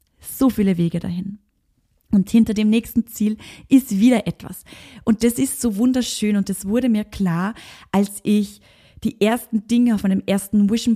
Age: 20-39